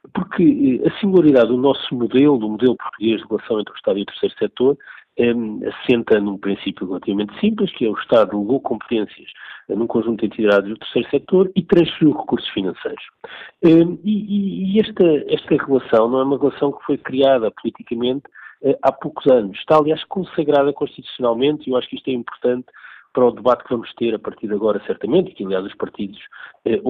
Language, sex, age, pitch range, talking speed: Portuguese, male, 50-69, 115-160 Hz, 190 wpm